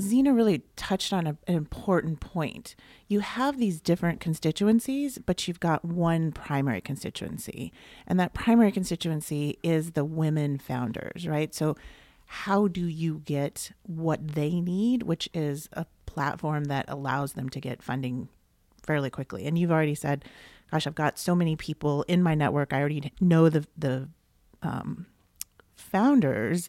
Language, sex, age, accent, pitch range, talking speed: English, female, 30-49, American, 140-175 Hz, 155 wpm